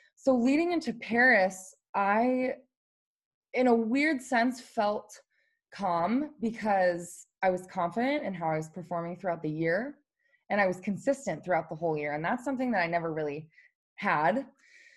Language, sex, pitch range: English, female, 195-270 Hz